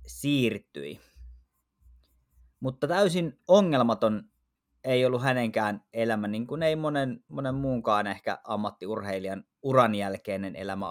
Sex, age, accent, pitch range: male, 20-39, native, 100-130 Hz